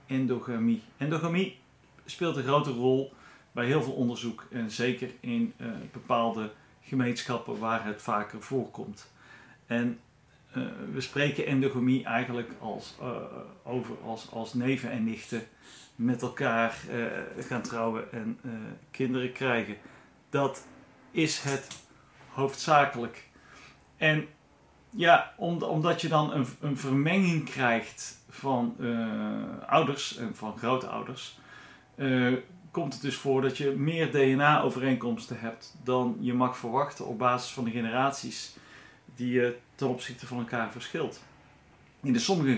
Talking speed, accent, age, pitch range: 125 wpm, Dutch, 40-59, 120-140 Hz